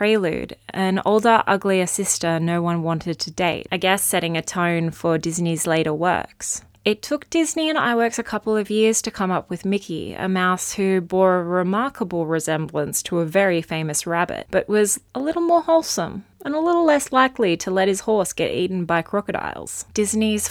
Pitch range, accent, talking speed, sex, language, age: 175-215 Hz, Australian, 190 wpm, female, English, 20-39